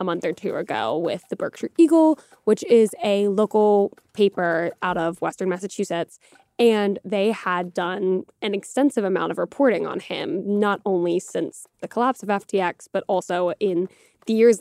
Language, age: English, 10-29